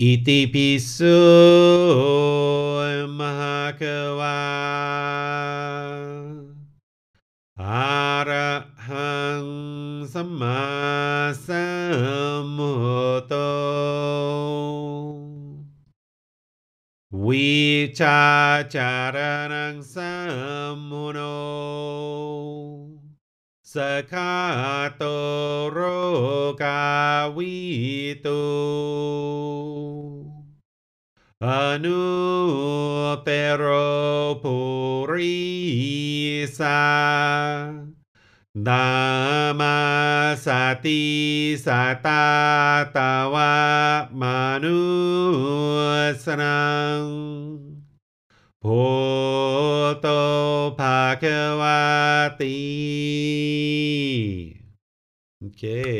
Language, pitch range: English, 135-145 Hz